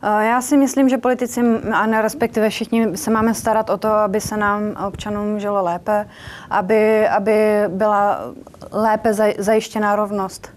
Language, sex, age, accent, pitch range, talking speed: Czech, female, 30-49, native, 195-220 Hz, 140 wpm